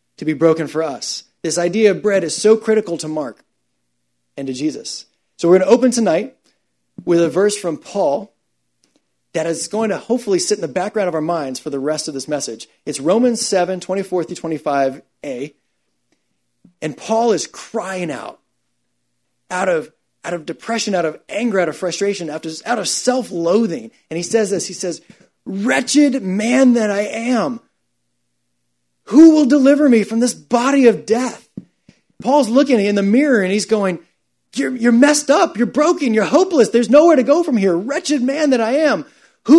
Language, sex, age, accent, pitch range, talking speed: English, male, 30-49, American, 150-235 Hz, 185 wpm